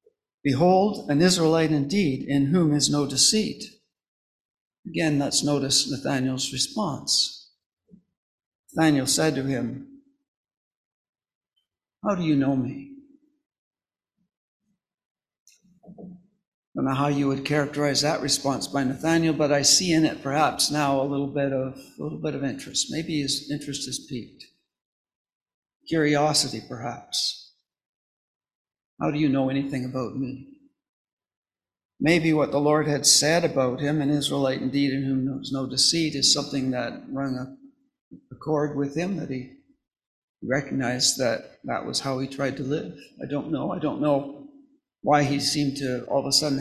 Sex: male